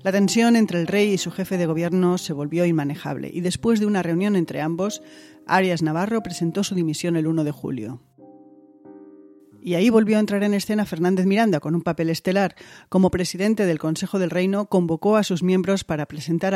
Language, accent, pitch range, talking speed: Spanish, Spanish, 165-200 Hz, 195 wpm